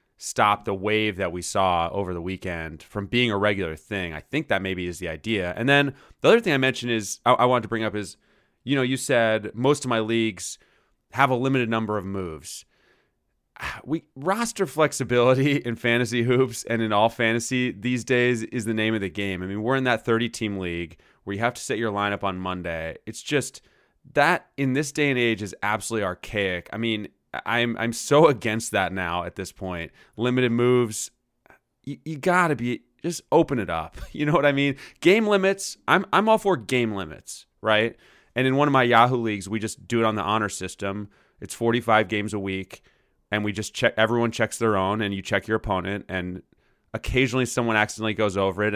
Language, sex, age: English, male, 30-49